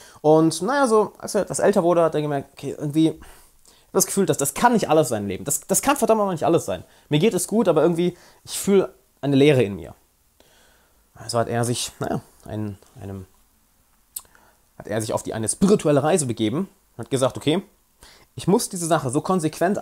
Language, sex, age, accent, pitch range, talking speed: German, male, 20-39, German, 120-180 Hz, 220 wpm